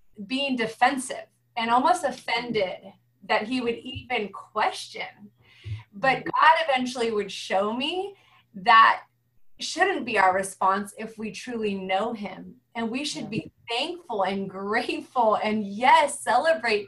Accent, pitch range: American, 200-250 Hz